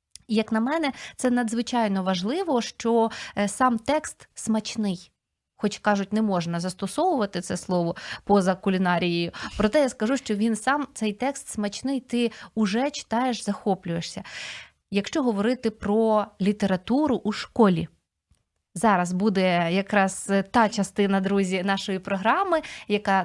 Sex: female